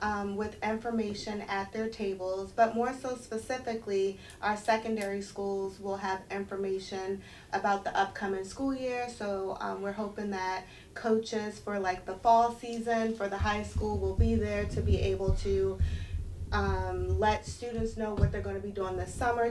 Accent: American